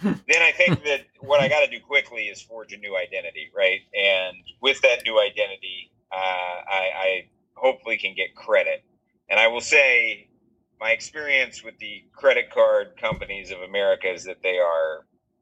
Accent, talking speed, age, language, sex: American, 175 wpm, 30-49, English, male